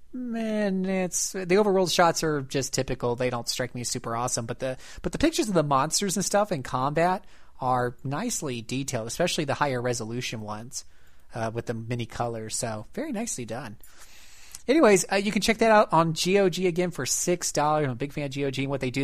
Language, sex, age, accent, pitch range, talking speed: English, male, 30-49, American, 120-155 Hz, 210 wpm